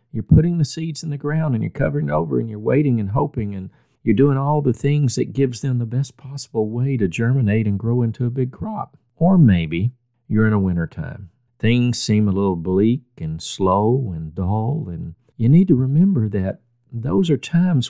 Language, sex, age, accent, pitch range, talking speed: English, male, 50-69, American, 95-145 Hz, 205 wpm